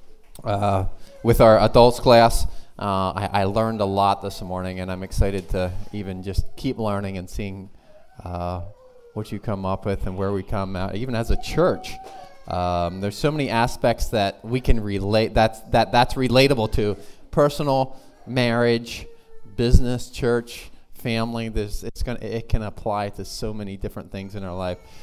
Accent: American